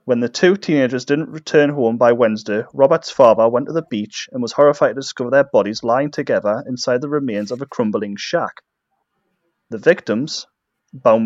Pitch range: 115-155 Hz